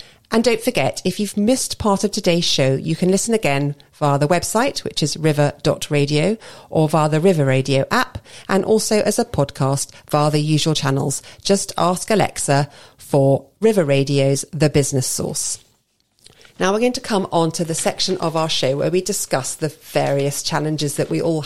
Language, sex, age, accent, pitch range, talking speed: English, female, 40-59, British, 145-195 Hz, 180 wpm